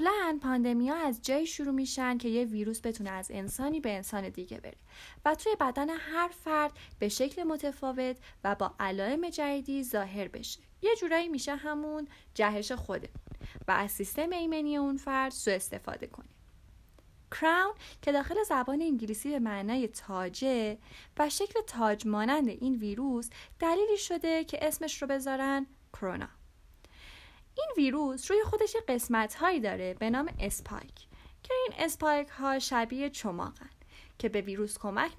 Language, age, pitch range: Persian, 10-29, 210-305 Hz